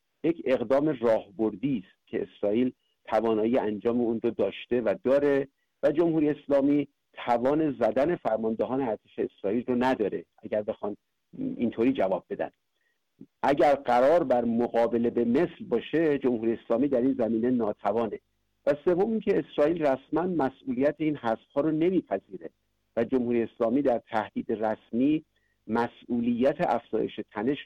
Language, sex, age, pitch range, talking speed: Persian, male, 50-69, 115-140 Hz, 130 wpm